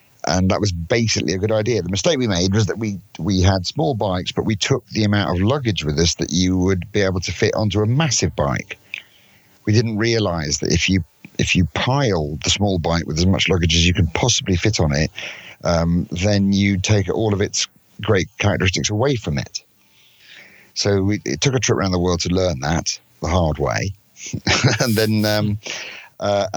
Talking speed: 210 wpm